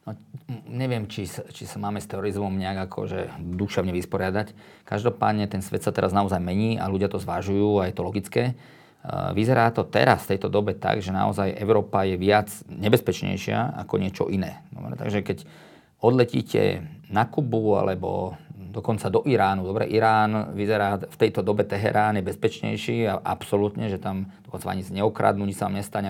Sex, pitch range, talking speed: male, 95-110 Hz, 170 wpm